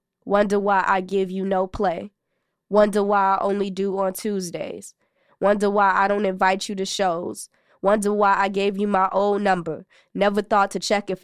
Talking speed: 185 wpm